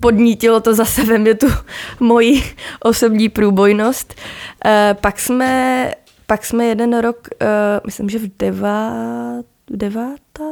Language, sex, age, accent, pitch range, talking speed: Czech, female, 20-39, native, 200-235 Hz, 115 wpm